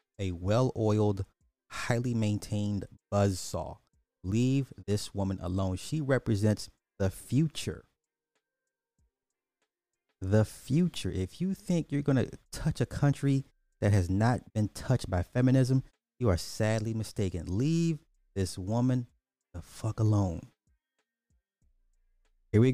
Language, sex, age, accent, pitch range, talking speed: English, male, 30-49, American, 95-115 Hz, 110 wpm